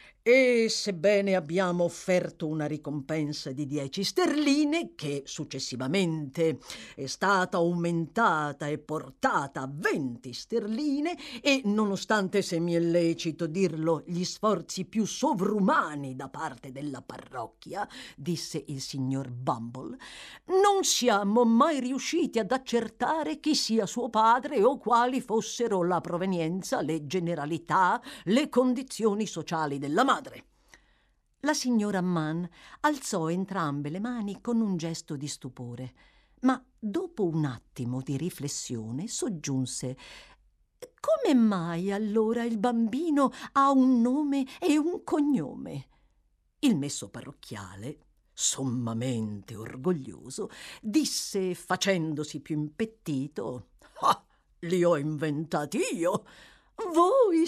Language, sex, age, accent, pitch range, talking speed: Italian, female, 50-69, native, 150-250 Hz, 110 wpm